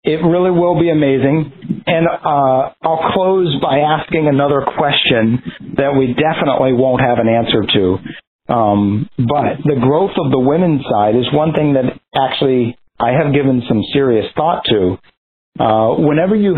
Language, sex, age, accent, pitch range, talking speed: English, male, 40-59, American, 115-155 Hz, 160 wpm